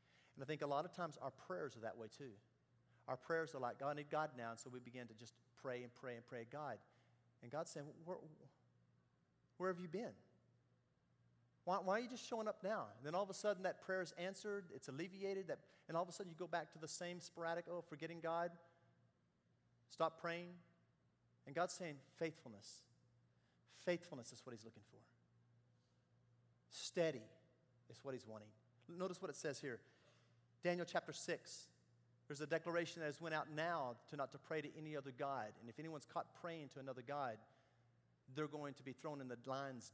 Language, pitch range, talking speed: English, 125-190 Hz, 200 wpm